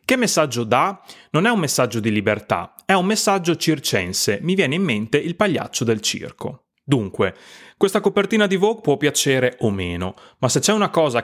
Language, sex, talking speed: Italian, male, 185 wpm